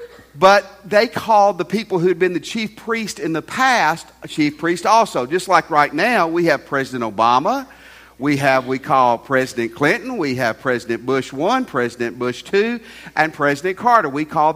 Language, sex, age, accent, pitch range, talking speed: English, male, 50-69, American, 140-200 Hz, 185 wpm